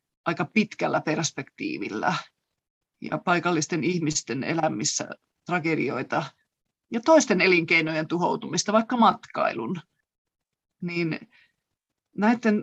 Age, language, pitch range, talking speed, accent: 30-49, Finnish, 180-245 Hz, 75 wpm, native